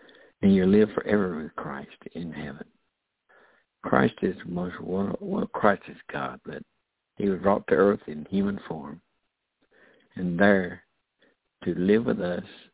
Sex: male